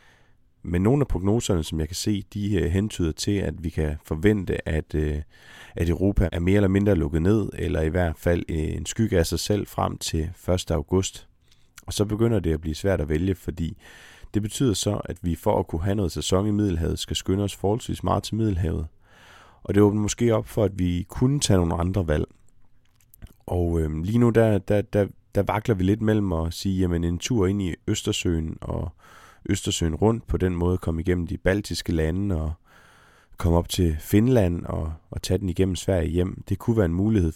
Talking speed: 205 wpm